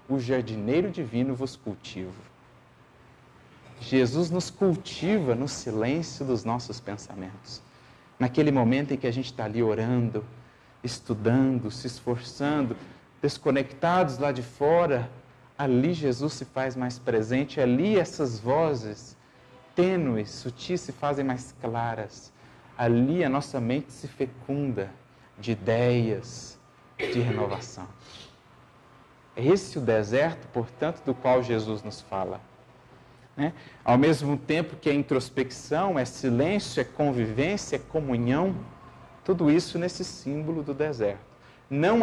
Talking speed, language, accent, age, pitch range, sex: 120 wpm, Portuguese, Brazilian, 40-59, 120-150 Hz, male